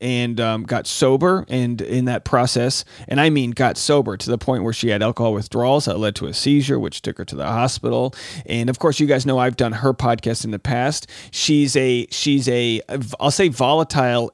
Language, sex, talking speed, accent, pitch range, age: English, male, 220 wpm, American, 115-140 Hz, 30-49